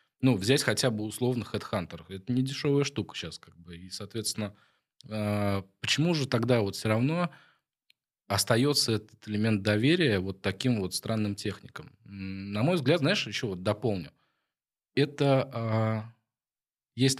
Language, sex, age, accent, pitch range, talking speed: Russian, male, 20-39, native, 100-135 Hz, 135 wpm